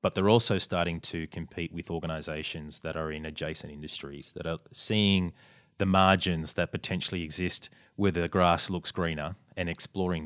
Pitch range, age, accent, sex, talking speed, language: 80-100 Hz, 30-49, Australian, male, 165 wpm, English